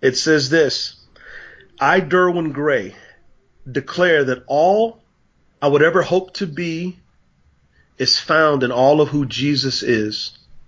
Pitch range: 130-180 Hz